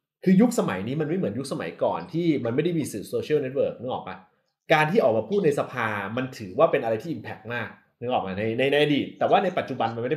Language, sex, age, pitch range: Thai, male, 20-39, 115-165 Hz